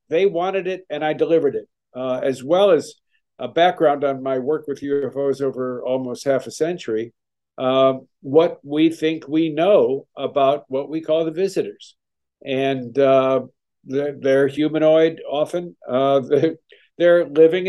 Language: English